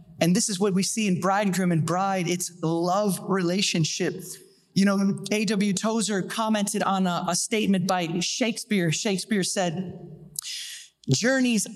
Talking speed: 135 wpm